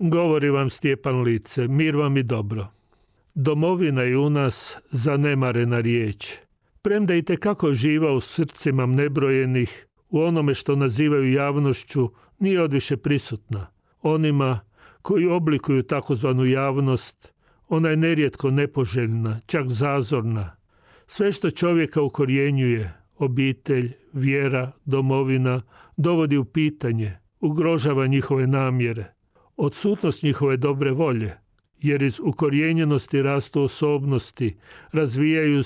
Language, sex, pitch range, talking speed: Croatian, male, 125-150 Hz, 105 wpm